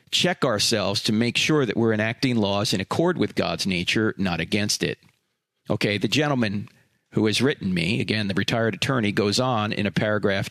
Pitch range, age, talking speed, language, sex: 110-135 Hz, 40-59, 190 wpm, English, male